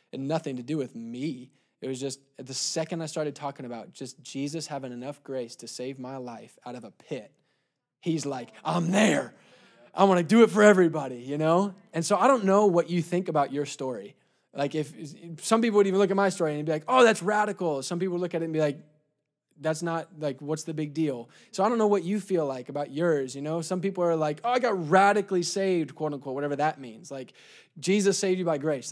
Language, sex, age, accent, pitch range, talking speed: English, male, 20-39, American, 140-195 Hz, 240 wpm